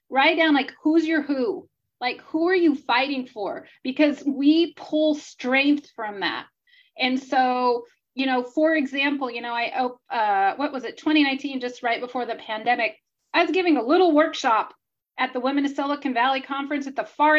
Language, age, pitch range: English, 30-49, 240-295 Hz